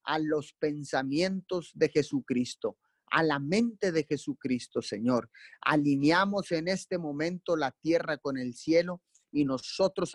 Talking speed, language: 130 wpm, Spanish